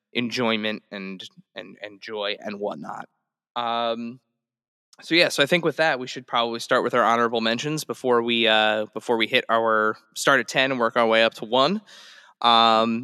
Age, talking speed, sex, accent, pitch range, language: 20-39, 190 wpm, male, American, 110-135 Hz, English